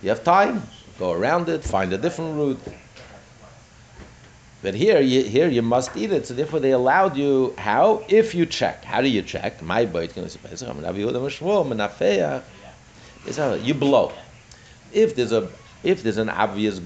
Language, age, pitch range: English, 60-79, 100-135 Hz